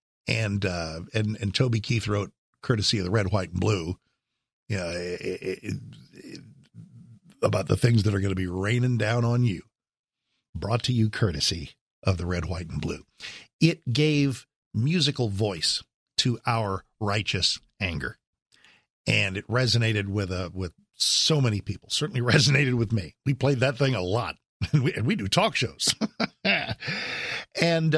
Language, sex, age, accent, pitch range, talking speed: English, male, 50-69, American, 100-135 Hz, 165 wpm